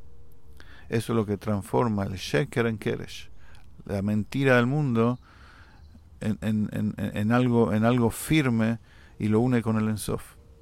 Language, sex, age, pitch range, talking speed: English, male, 50-69, 95-115 Hz, 155 wpm